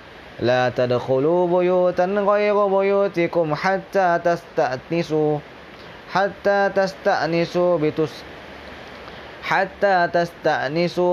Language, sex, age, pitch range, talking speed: English, male, 20-39, 130-170 Hz, 65 wpm